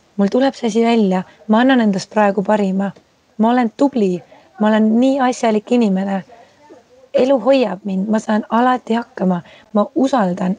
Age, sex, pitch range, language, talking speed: 20-39, female, 195-225 Hz, English, 145 wpm